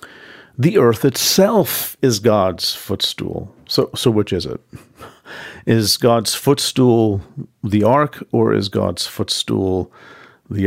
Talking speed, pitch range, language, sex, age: 120 wpm, 100-125 Hz, English, male, 50-69